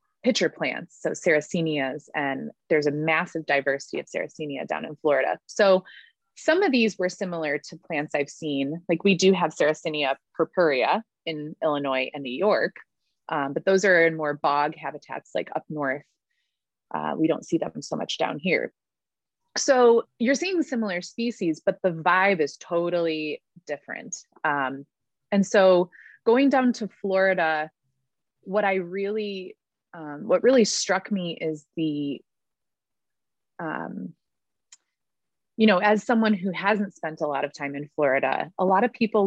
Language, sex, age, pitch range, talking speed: English, female, 20-39, 150-205 Hz, 155 wpm